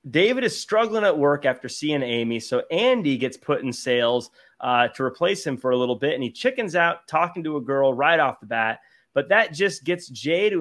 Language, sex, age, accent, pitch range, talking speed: English, male, 30-49, American, 135-205 Hz, 225 wpm